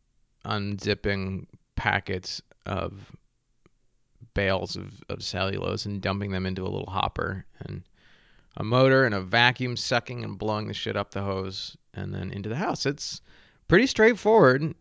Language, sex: English, male